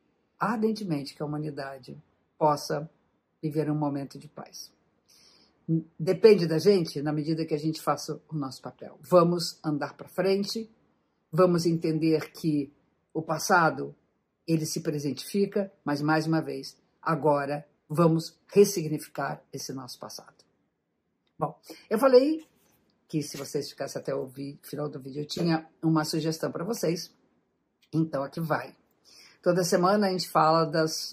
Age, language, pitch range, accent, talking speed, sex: 50-69, Portuguese, 150-195 Hz, Brazilian, 135 wpm, female